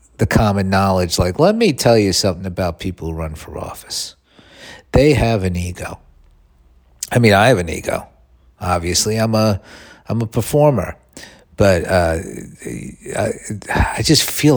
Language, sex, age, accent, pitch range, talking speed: English, male, 50-69, American, 90-115 Hz, 150 wpm